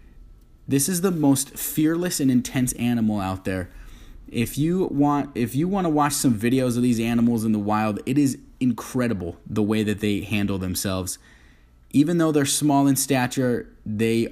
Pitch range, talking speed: 100-120 Hz, 175 wpm